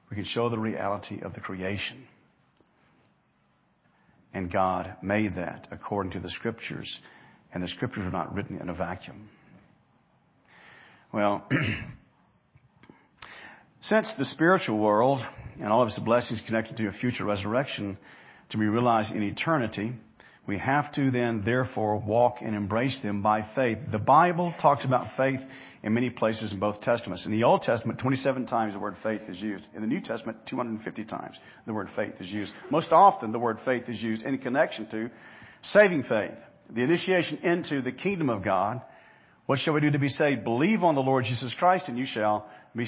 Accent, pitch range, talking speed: American, 105-130 Hz, 175 wpm